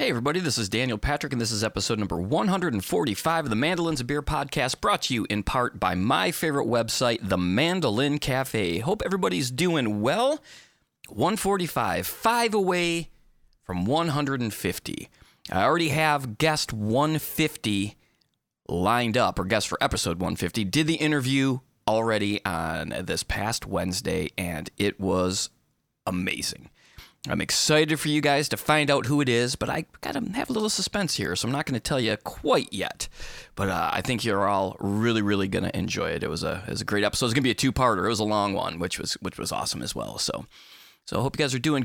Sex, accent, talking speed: male, American, 200 wpm